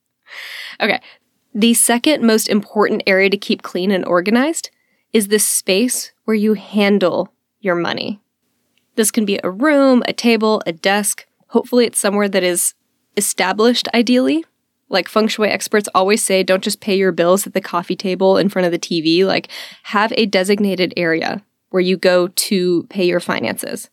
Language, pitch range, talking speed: English, 190-235 Hz, 170 wpm